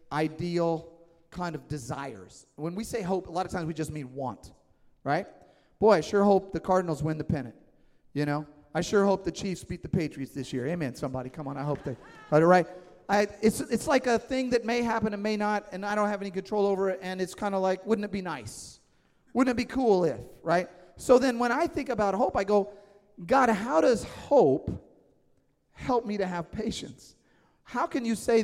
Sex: male